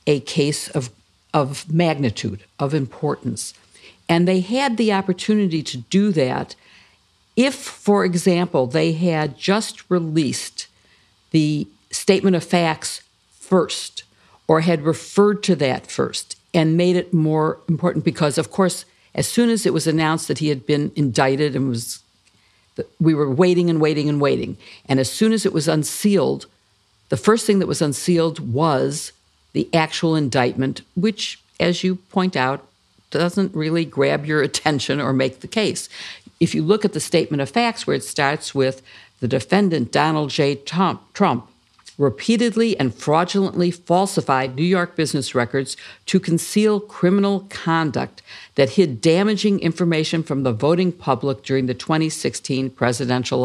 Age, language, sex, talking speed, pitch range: 60-79, English, female, 150 wpm, 135-185 Hz